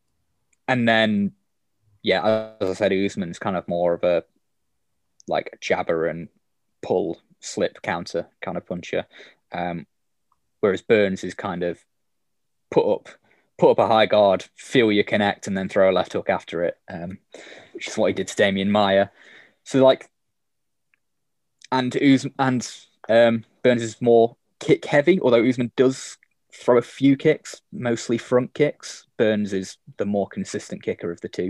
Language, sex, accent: English, male, British